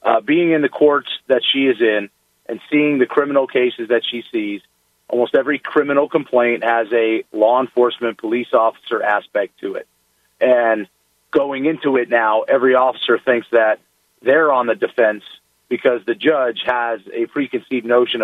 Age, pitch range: 40-59, 125-155 Hz